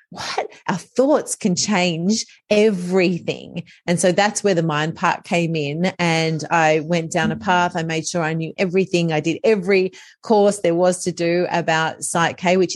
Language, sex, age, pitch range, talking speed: English, female, 30-49, 160-190 Hz, 185 wpm